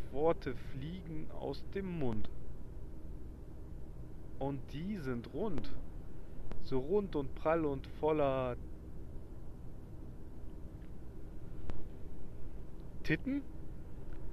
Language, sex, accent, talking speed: German, male, German, 65 wpm